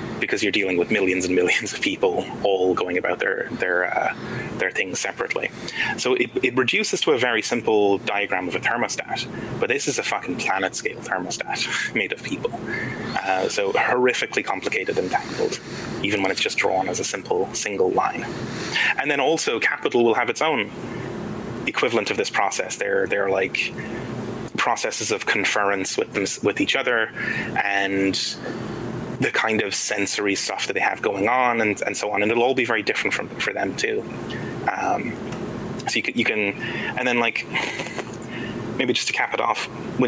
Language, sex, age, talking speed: English, male, 20-39, 180 wpm